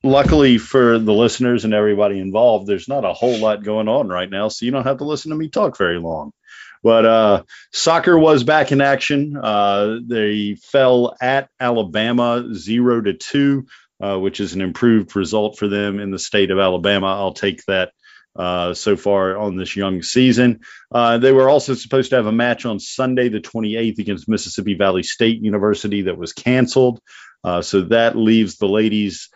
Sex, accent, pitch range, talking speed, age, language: male, American, 100-125 Hz, 190 wpm, 40-59, English